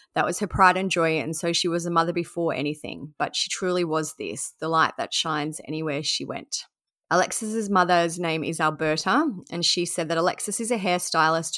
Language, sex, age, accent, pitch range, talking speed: English, female, 20-39, Australian, 160-185 Hz, 200 wpm